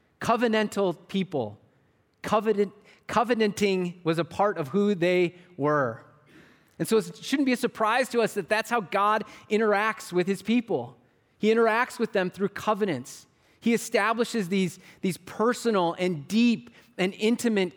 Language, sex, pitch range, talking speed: English, male, 155-210 Hz, 140 wpm